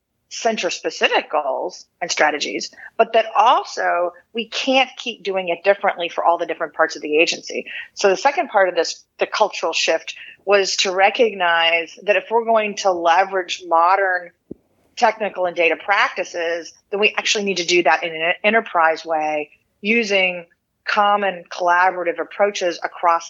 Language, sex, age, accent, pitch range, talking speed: English, female, 40-59, American, 165-205 Hz, 155 wpm